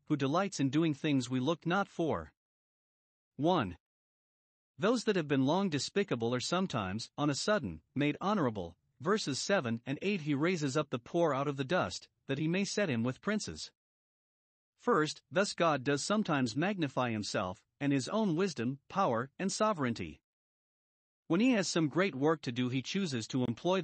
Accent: American